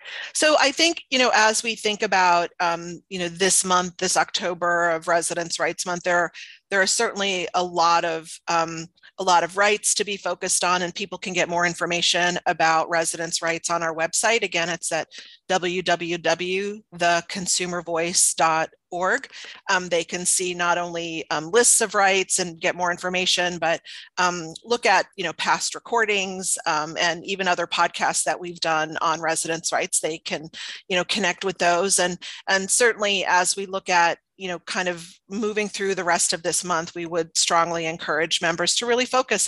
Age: 40-59